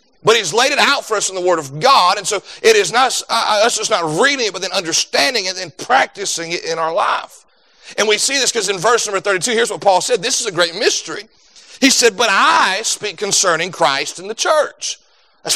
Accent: American